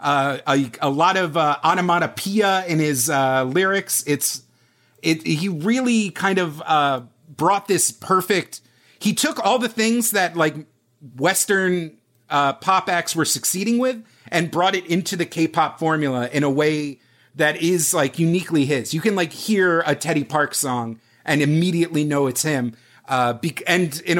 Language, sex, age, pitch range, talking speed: English, male, 30-49, 135-185 Hz, 170 wpm